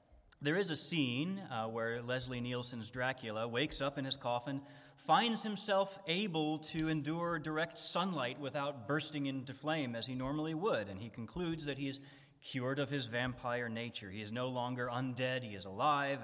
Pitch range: 115-150 Hz